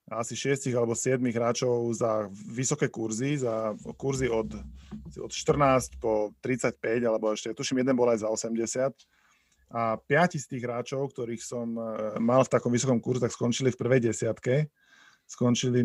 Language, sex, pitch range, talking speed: Slovak, male, 115-135 Hz, 150 wpm